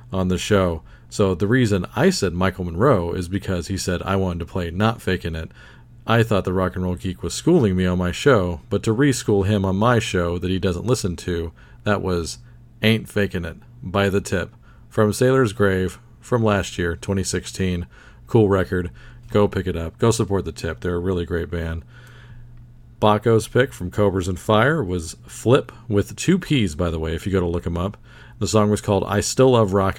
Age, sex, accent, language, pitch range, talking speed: 40-59, male, American, English, 90-115 Hz, 210 wpm